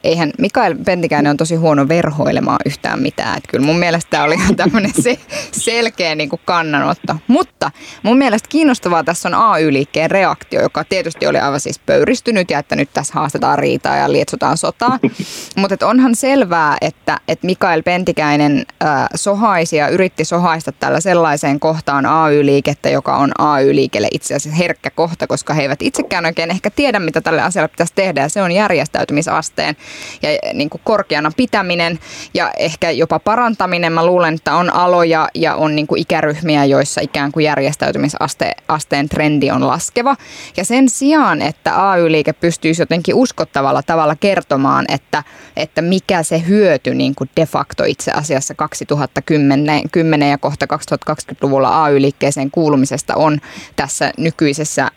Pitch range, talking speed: 150-180 Hz, 145 wpm